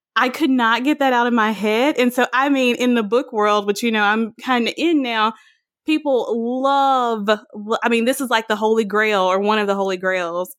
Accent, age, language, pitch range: American, 20-39, English, 205-315 Hz